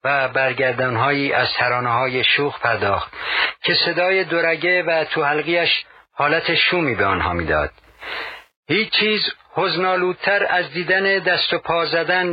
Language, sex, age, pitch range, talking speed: Persian, male, 50-69, 140-175 Hz, 125 wpm